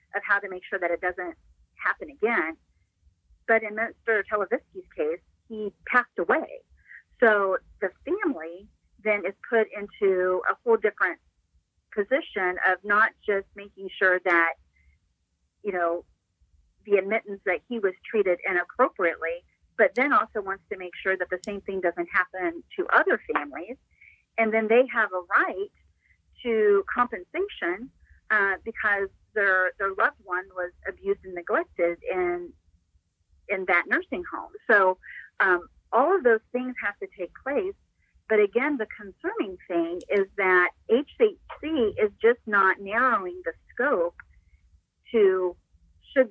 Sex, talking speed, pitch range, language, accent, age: female, 140 wpm, 175-230 Hz, English, American, 40-59